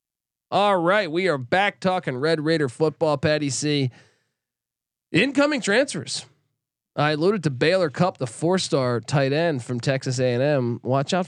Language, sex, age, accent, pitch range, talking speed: English, male, 20-39, American, 125-155 Hz, 160 wpm